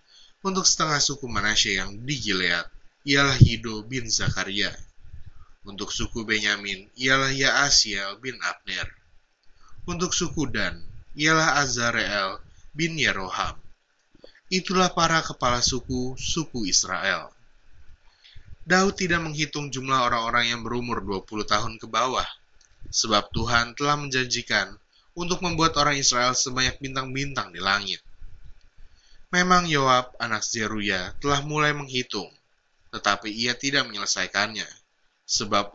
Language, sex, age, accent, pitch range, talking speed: Indonesian, male, 20-39, native, 110-145 Hz, 110 wpm